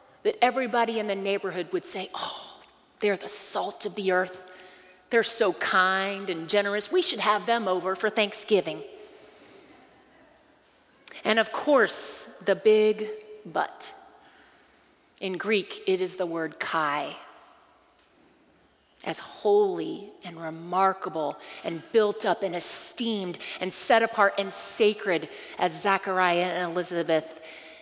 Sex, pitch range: female, 185-300 Hz